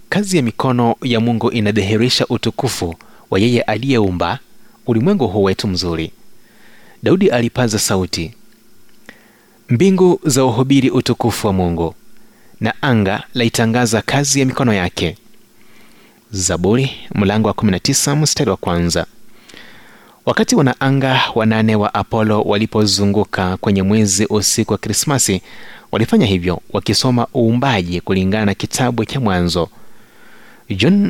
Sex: male